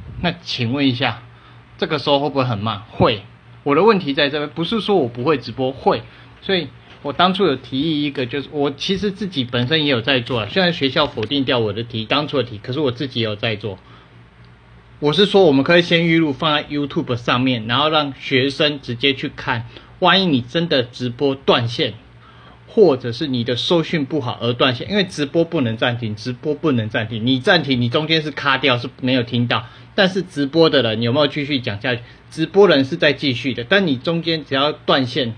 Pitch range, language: 120-155 Hz, Chinese